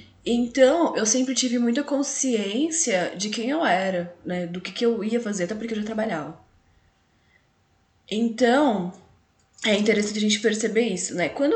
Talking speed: 160 wpm